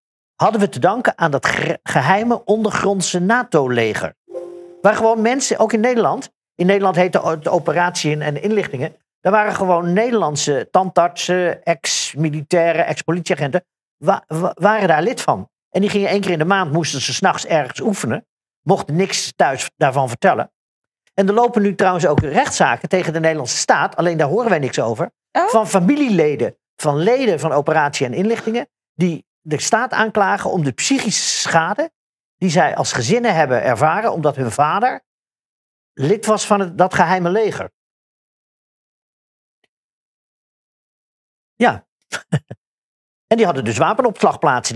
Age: 50-69